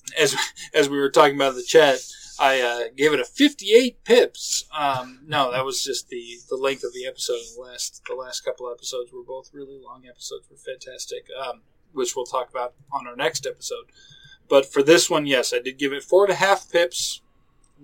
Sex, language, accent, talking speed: male, English, American, 215 wpm